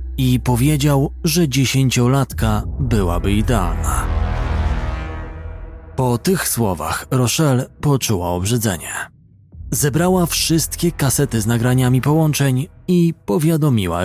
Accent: native